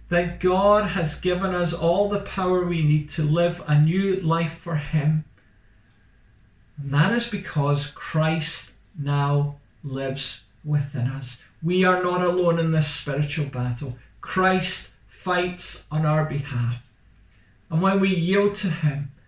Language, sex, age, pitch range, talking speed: English, male, 40-59, 125-185 Hz, 140 wpm